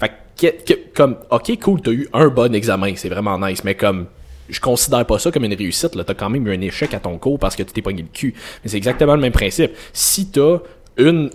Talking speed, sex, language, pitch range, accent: 260 wpm, male, French, 100-140 Hz, Canadian